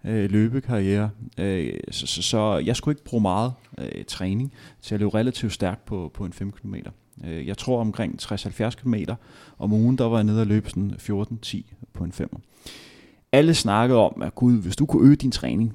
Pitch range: 100-120 Hz